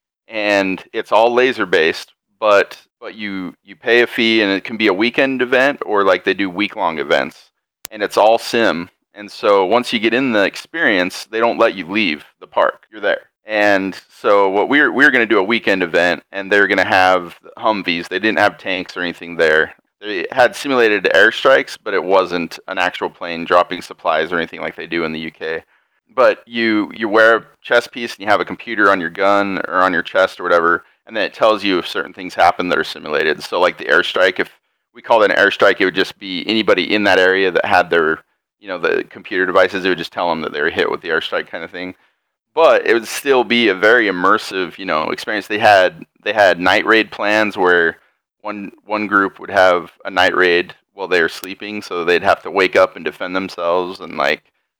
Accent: American